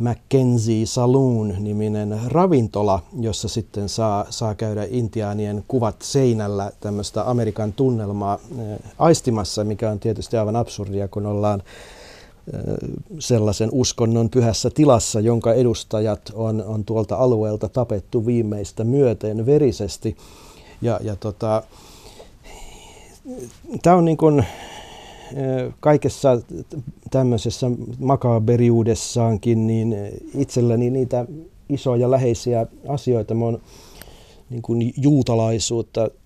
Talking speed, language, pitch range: 95 wpm, Finnish, 110-130 Hz